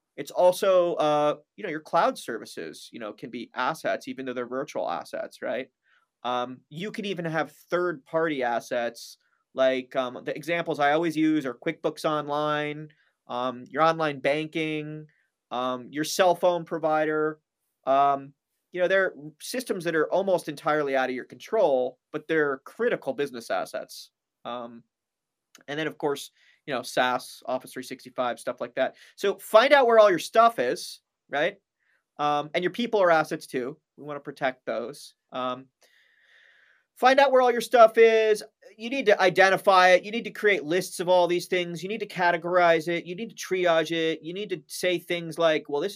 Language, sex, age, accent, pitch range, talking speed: English, male, 30-49, American, 145-180 Hz, 180 wpm